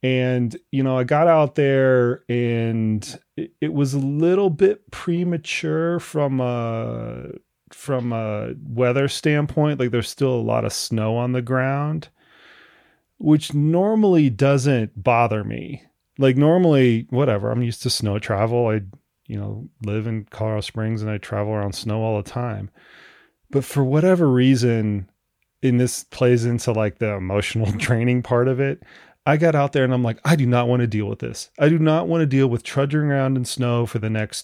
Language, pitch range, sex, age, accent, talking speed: English, 110-140 Hz, male, 30-49, American, 180 wpm